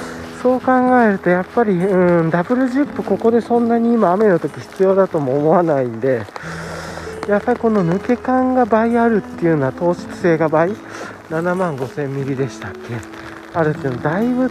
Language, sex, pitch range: Japanese, male, 145-235 Hz